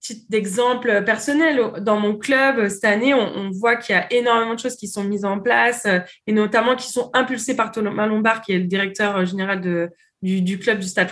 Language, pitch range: French, 195-240 Hz